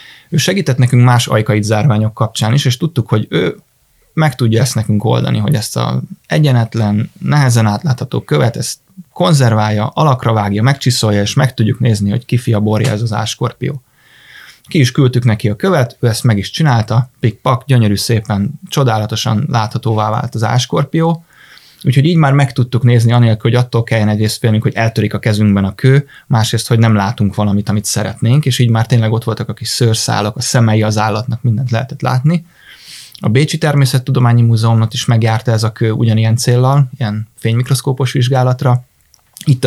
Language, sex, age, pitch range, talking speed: Hungarian, male, 20-39, 110-130 Hz, 170 wpm